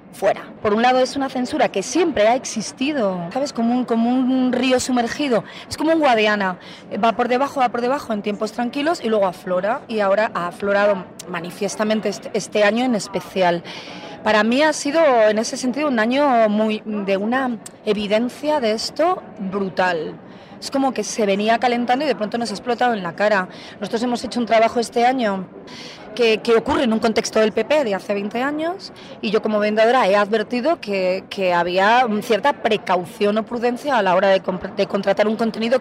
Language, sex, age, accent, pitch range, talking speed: Spanish, female, 30-49, Spanish, 200-245 Hz, 190 wpm